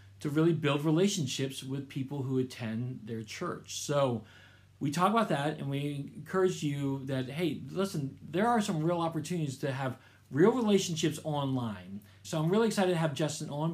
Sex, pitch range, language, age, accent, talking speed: male, 125-170 Hz, English, 40-59, American, 175 wpm